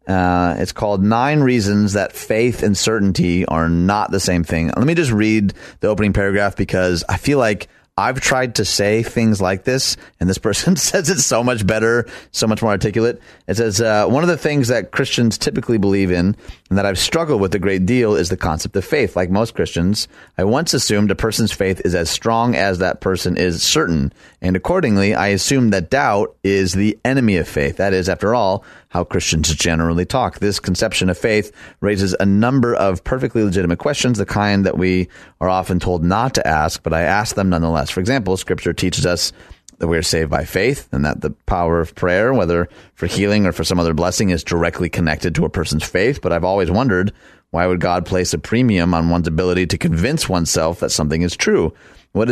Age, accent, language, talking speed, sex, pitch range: 30-49, American, English, 210 wpm, male, 90-110 Hz